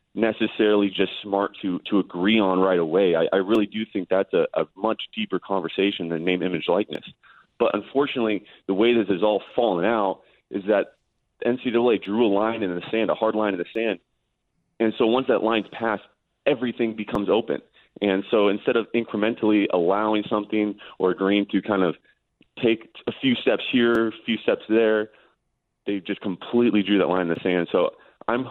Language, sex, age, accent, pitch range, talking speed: English, male, 30-49, American, 95-115 Hz, 185 wpm